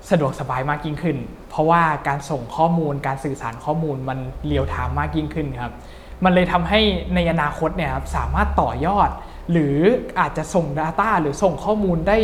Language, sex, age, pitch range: Thai, male, 20-39, 140-180 Hz